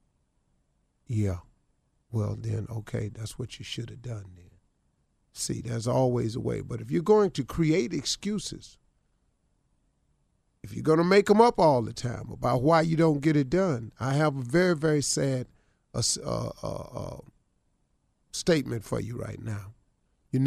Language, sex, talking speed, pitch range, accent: English, male, 160 wpm, 120-180 Hz, American